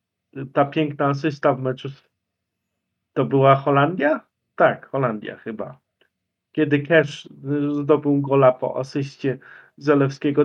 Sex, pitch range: male, 135-160 Hz